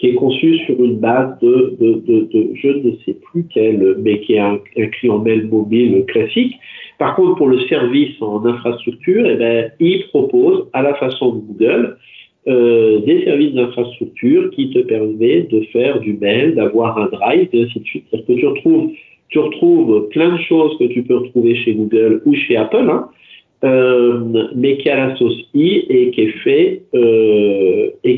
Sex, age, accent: male, 50-69, French